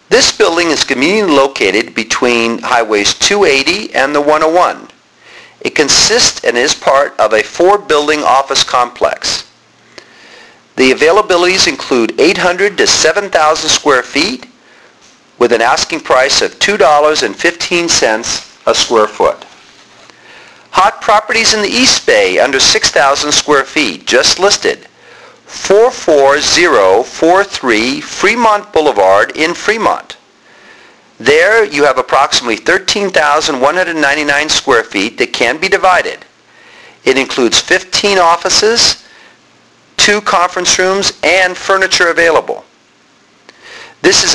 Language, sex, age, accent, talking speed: English, male, 50-69, American, 105 wpm